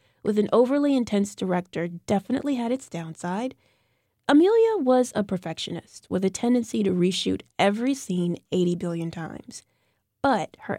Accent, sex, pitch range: American, female, 175-235 Hz